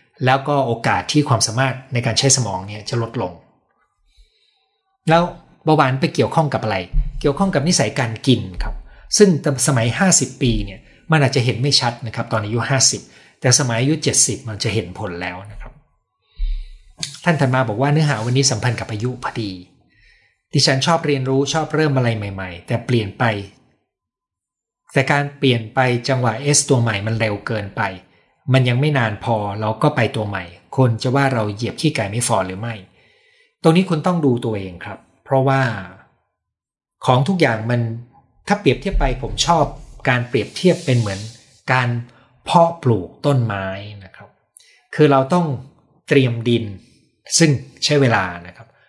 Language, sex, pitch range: Thai, male, 110-145 Hz